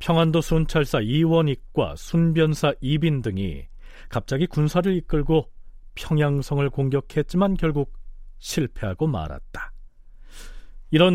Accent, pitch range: native, 130-170 Hz